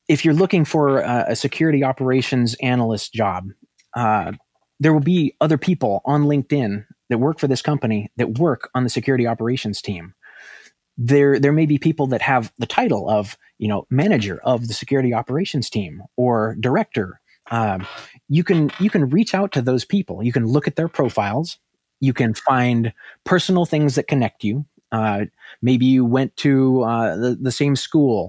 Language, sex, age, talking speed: English, male, 20-39, 180 wpm